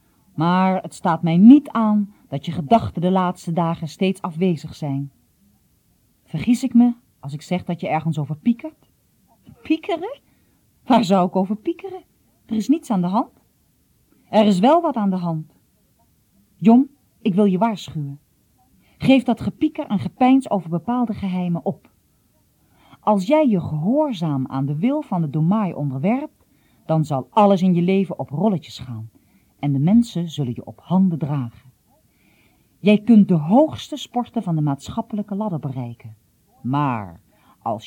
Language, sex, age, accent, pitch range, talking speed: Dutch, female, 40-59, Dutch, 145-220 Hz, 155 wpm